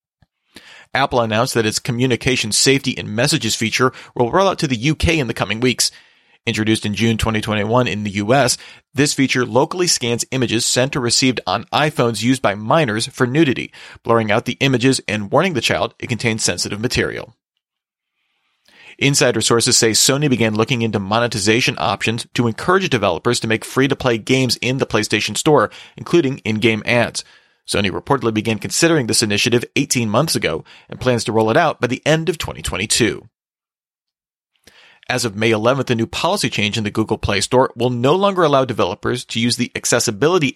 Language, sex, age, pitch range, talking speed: English, male, 40-59, 110-130 Hz, 175 wpm